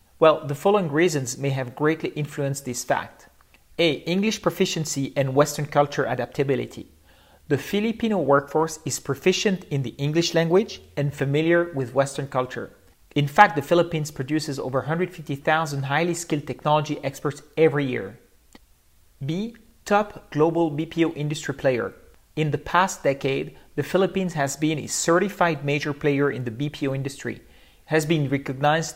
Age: 40-59